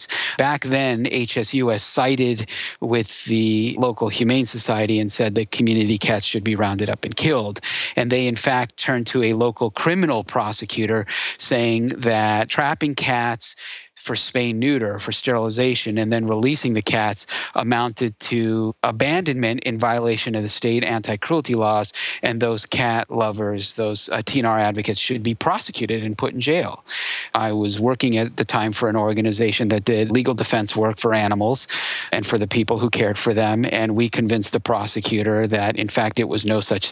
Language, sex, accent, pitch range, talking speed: English, male, American, 110-125 Hz, 170 wpm